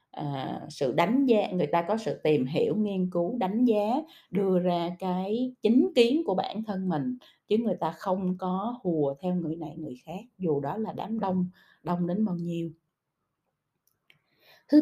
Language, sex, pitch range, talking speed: Vietnamese, female, 160-210 Hz, 175 wpm